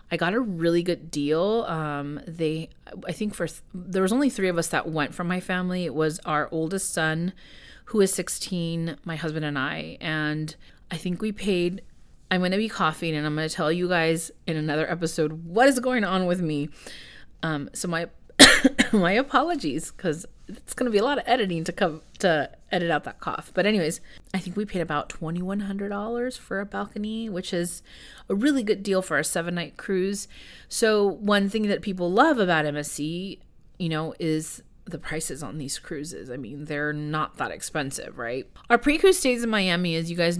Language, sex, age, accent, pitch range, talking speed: English, female, 30-49, American, 155-200 Hz, 200 wpm